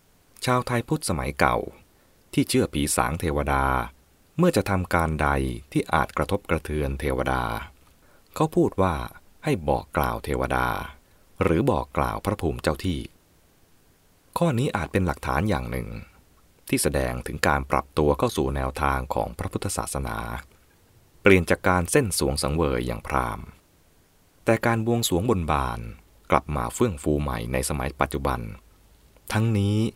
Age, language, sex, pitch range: 20-39, English, male, 70-105 Hz